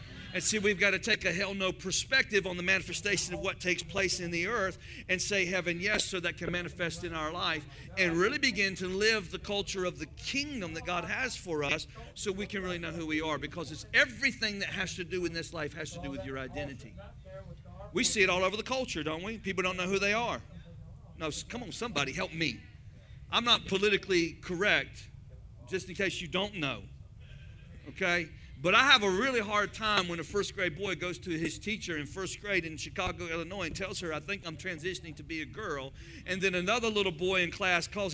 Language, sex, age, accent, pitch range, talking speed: English, male, 40-59, American, 160-200 Hz, 225 wpm